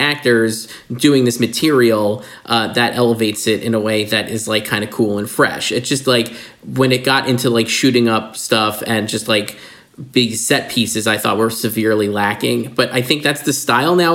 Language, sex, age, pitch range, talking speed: English, male, 20-39, 115-145 Hz, 205 wpm